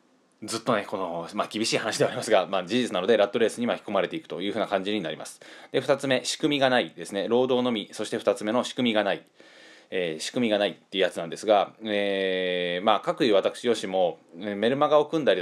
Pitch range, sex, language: 100-150 Hz, male, Japanese